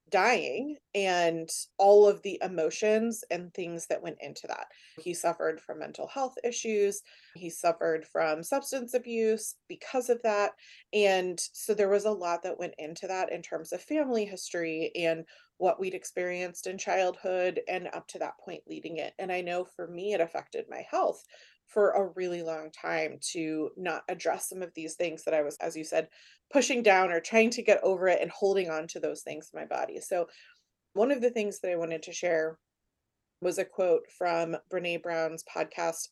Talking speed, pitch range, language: 190 wpm, 165-210 Hz, English